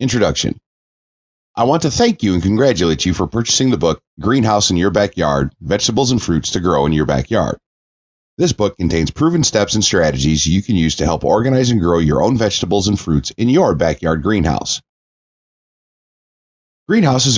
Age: 30-49